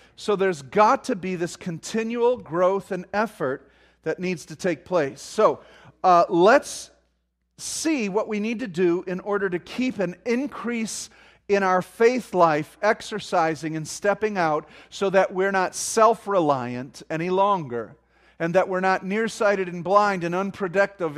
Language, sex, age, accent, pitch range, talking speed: English, male, 40-59, American, 140-200 Hz, 155 wpm